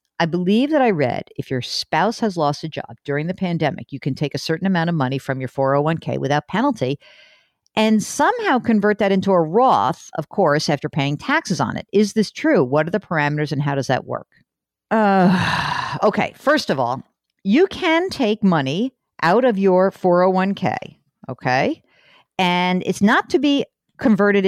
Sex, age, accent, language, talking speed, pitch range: female, 50-69, American, English, 180 wpm, 155-225 Hz